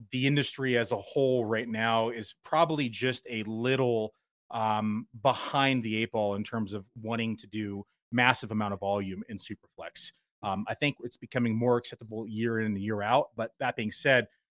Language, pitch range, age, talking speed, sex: English, 110-130 Hz, 30-49, 185 wpm, male